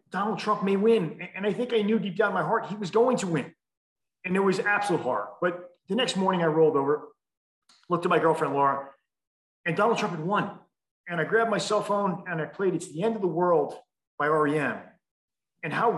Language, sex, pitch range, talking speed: English, male, 160-210 Hz, 225 wpm